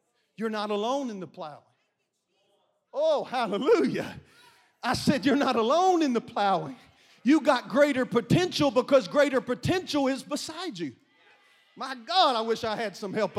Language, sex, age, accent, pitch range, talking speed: English, male, 40-59, American, 220-310 Hz, 150 wpm